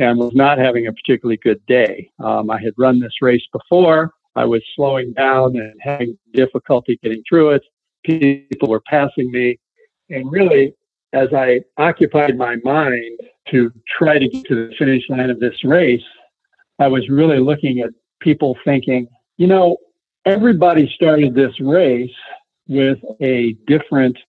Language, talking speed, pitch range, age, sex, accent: English, 155 wpm, 120-150 Hz, 60-79, male, American